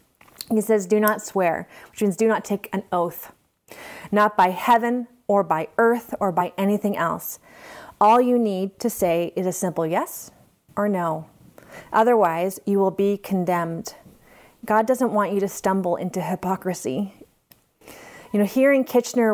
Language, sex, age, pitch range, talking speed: English, female, 30-49, 175-215 Hz, 160 wpm